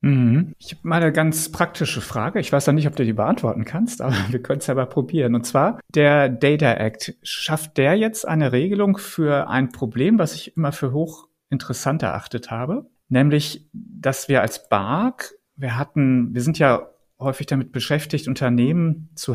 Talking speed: 180 wpm